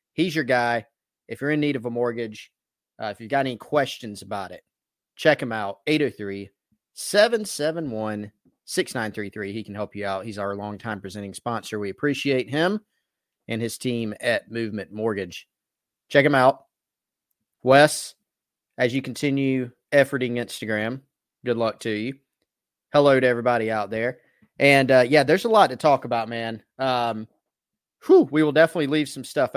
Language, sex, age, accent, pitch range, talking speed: English, male, 30-49, American, 110-140 Hz, 155 wpm